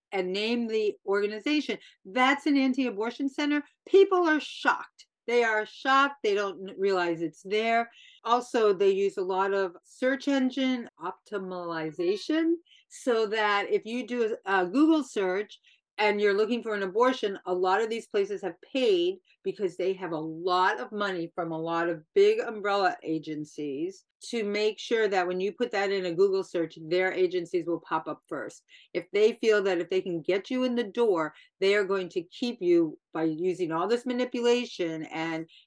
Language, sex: English, female